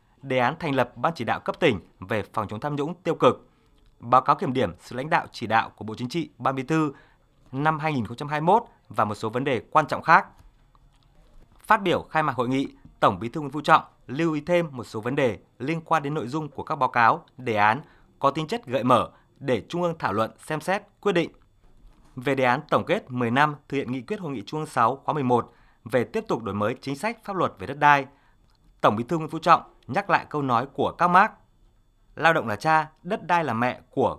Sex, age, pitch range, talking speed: male, 20-39, 120-155 Hz, 240 wpm